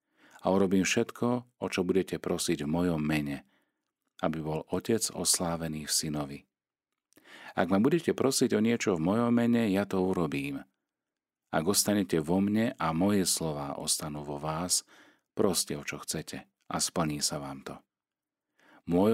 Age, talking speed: 40-59, 150 wpm